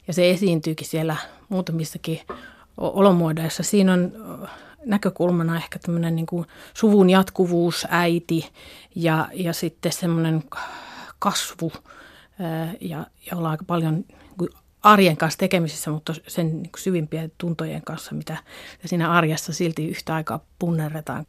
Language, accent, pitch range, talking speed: Finnish, native, 160-190 Hz, 120 wpm